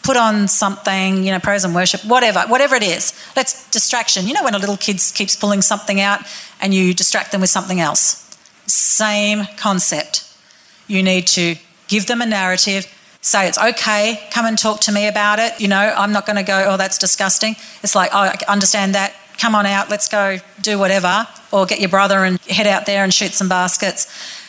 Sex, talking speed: female, 210 wpm